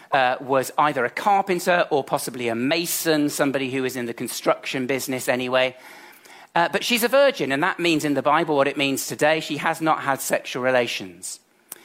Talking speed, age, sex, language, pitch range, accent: 195 wpm, 40-59, male, English, 130-175 Hz, British